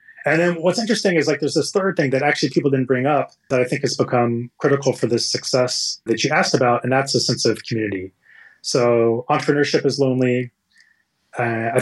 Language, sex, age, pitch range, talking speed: English, male, 20-39, 115-140 Hz, 210 wpm